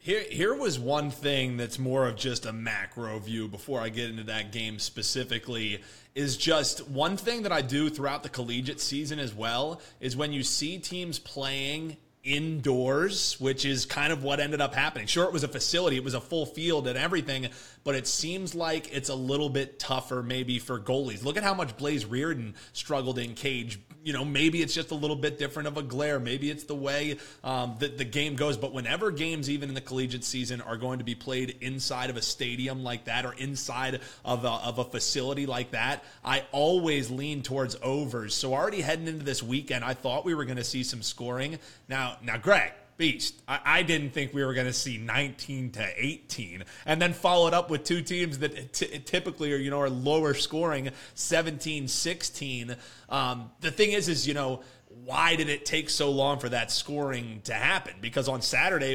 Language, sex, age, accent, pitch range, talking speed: English, male, 30-49, American, 125-150 Hz, 205 wpm